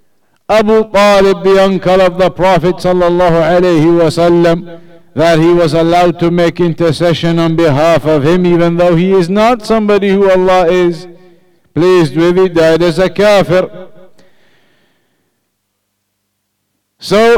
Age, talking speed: 50-69, 120 wpm